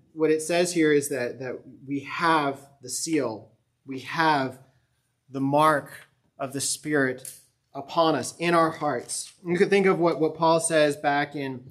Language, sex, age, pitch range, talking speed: English, male, 30-49, 130-160 Hz, 170 wpm